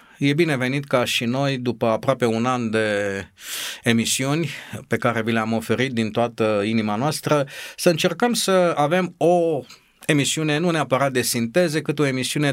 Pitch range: 110-140 Hz